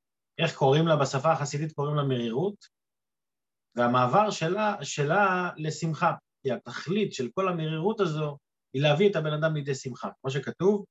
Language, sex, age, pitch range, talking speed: Hebrew, male, 30-49, 135-195 Hz, 150 wpm